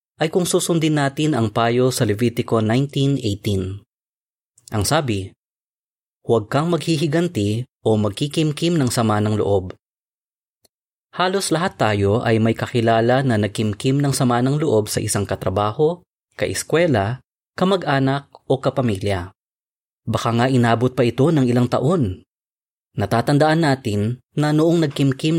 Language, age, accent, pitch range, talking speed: Filipino, 20-39, native, 110-145 Hz, 125 wpm